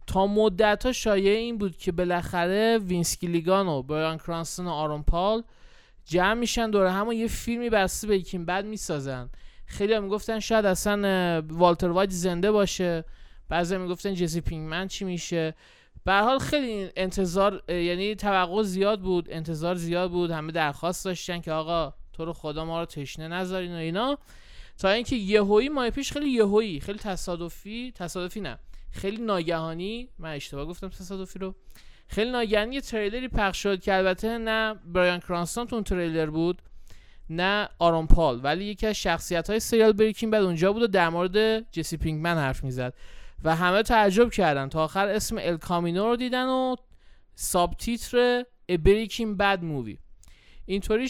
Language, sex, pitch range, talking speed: Persian, male, 165-210 Hz, 155 wpm